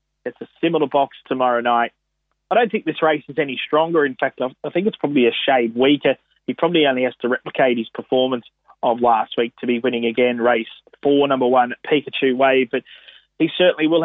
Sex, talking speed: male, 205 wpm